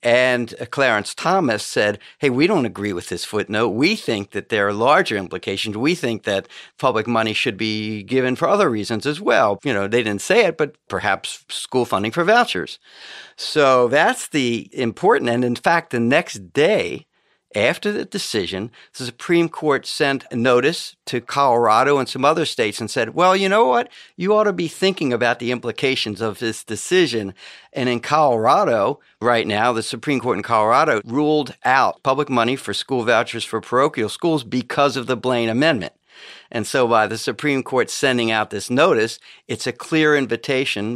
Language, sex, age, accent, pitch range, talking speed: English, male, 50-69, American, 110-145 Hz, 180 wpm